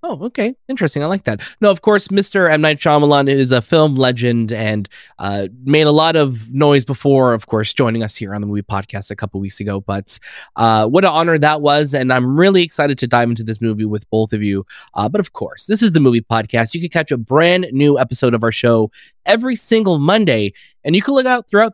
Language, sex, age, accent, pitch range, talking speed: English, male, 20-39, American, 120-185 Hz, 235 wpm